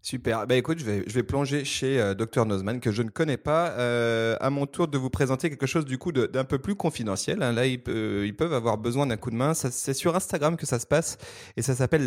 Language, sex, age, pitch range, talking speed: French, male, 30-49, 115-145 Hz, 280 wpm